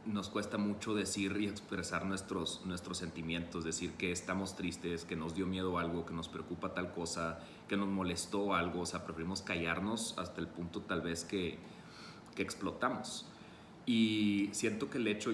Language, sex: Spanish, male